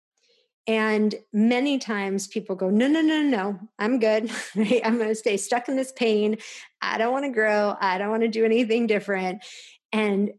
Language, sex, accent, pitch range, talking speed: English, female, American, 190-220 Hz, 190 wpm